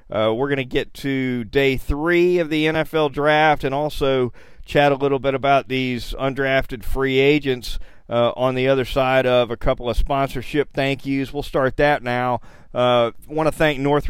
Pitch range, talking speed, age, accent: 120-140 Hz, 185 wpm, 40-59, American